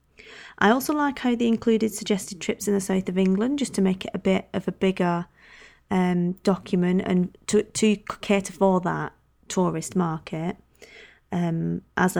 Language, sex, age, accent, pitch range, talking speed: English, female, 20-39, British, 180-215 Hz, 165 wpm